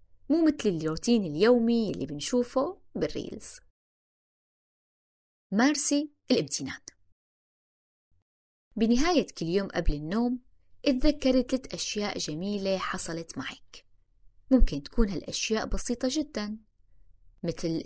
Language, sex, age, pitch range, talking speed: Arabic, female, 20-39, 150-240 Hz, 85 wpm